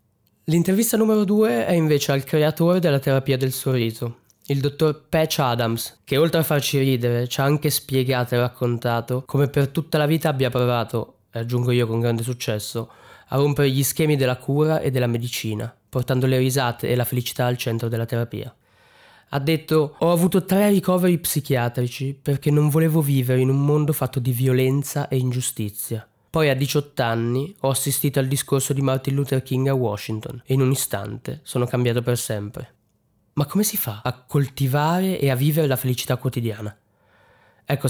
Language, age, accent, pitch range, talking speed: Italian, 20-39, native, 120-150 Hz, 175 wpm